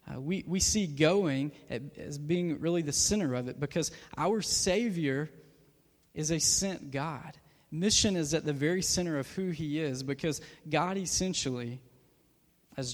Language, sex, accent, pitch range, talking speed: English, male, American, 140-170 Hz, 150 wpm